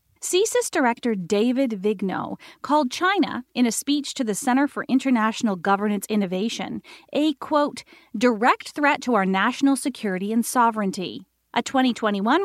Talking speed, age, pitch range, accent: 135 wpm, 40-59, 220-290 Hz, American